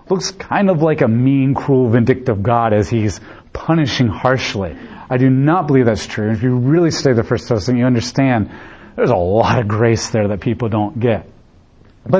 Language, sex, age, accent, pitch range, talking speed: English, male, 40-59, American, 120-170 Hz, 190 wpm